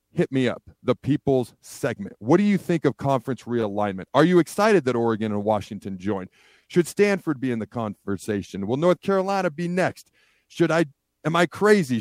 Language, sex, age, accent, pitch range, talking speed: English, male, 40-59, American, 115-150 Hz, 185 wpm